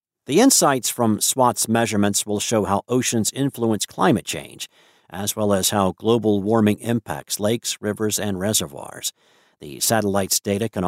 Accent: American